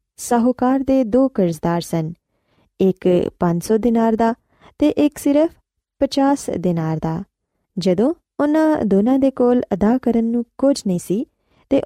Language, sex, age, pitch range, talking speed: Punjabi, female, 20-39, 185-270 Hz, 135 wpm